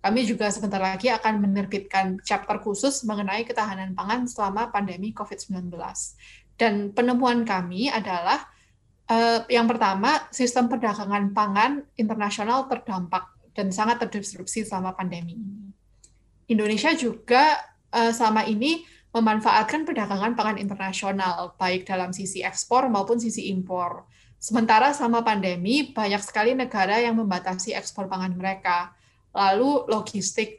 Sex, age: female, 20-39